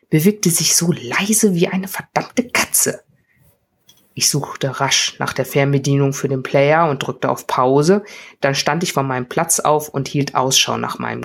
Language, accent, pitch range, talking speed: German, German, 135-175 Hz, 175 wpm